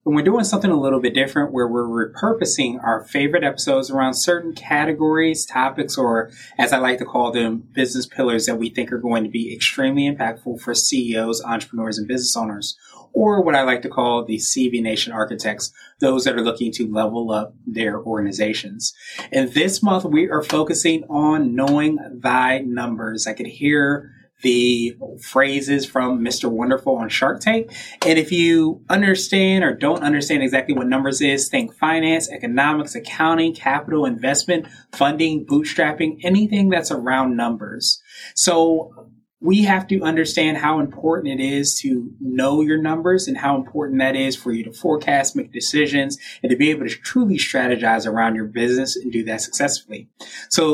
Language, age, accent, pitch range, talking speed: English, 30-49, American, 125-165 Hz, 170 wpm